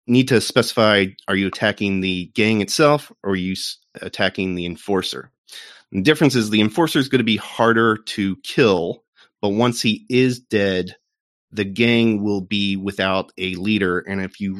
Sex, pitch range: male, 95-120 Hz